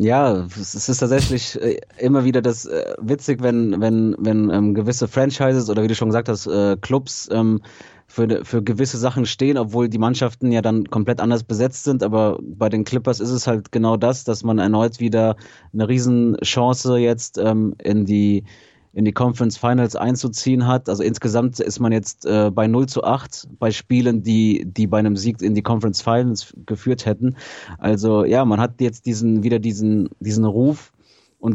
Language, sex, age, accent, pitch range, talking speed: German, male, 30-49, German, 105-125 Hz, 185 wpm